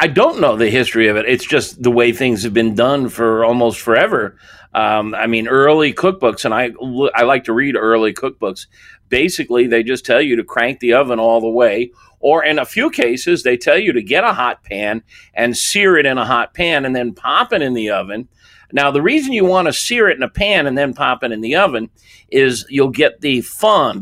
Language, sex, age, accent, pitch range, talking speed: English, male, 50-69, American, 115-140 Hz, 230 wpm